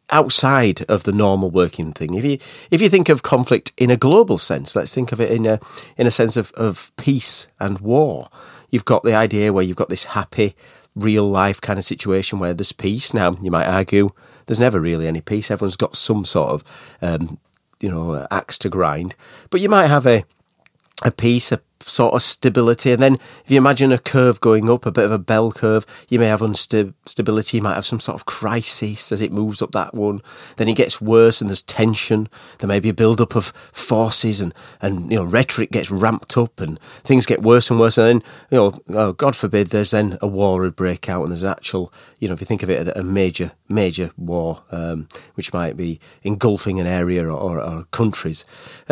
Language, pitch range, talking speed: English, 95-120 Hz, 225 wpm